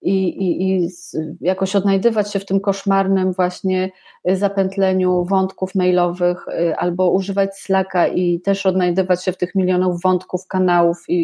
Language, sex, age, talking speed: Polish, female, 30-49, 140 wpm